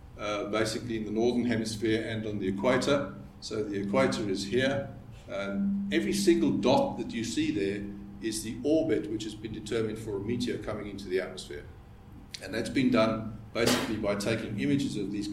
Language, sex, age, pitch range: English, male, 50-69, 100-120 Hz